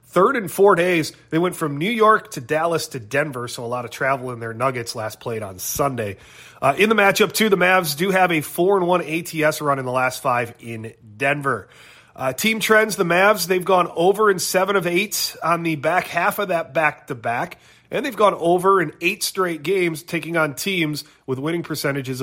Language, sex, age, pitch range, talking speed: English, male, 30-49, 140-185 Hz, 215 wpm